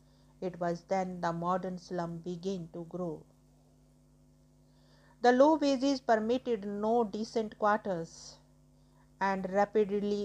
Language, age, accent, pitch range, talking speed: English, 50-69, Indian, 175-205 Hz, 105 wpm